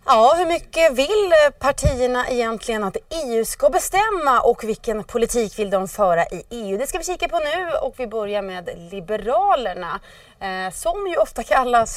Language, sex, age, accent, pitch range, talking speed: Swedish, female, 30-49, native, 205-290 Hz, 170 wpm